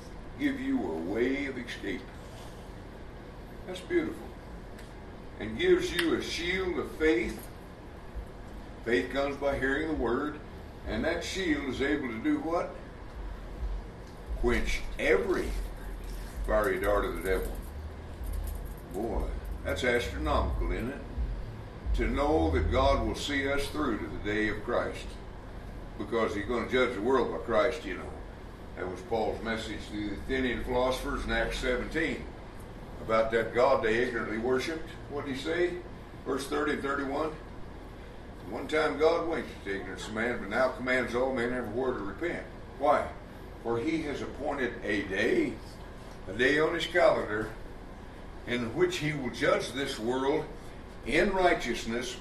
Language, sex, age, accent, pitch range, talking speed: English, male, 60-79, American, 110-165 Hz, 145 wpm